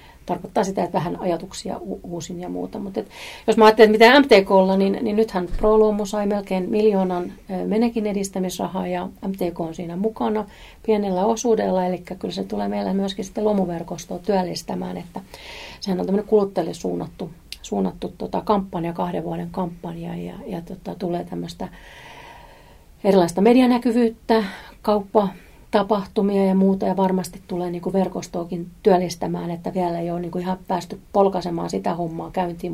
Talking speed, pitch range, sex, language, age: 150 wpm, 175-215 Hz, female, Finnish, 40-59